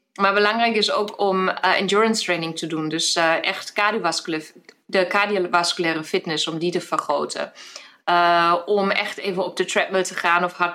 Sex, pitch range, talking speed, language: female, 170-195 Hz, 175 wpm, Dutch